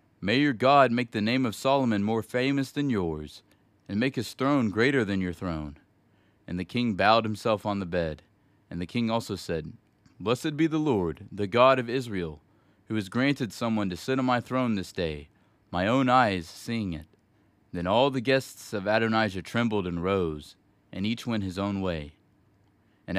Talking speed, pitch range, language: 190 wpm, 95-120 Hz, English